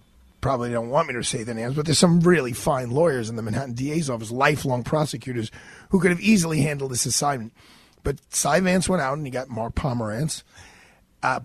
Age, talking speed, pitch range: 40-59, 205 wpm, 125-165 Hz